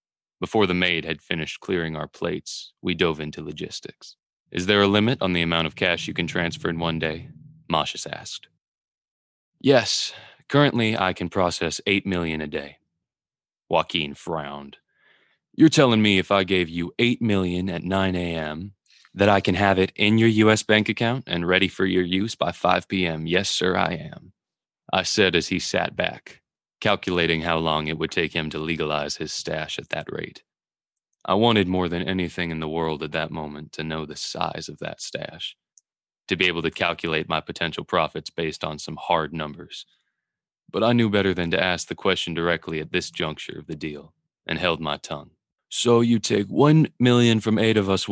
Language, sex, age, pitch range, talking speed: English, male, 20-39, 80-100 Hz, 190 wpm